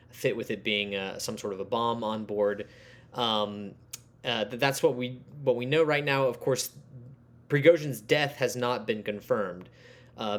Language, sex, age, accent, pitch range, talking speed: English, male, 20-39, American, 110-130 Hz, 180 wpm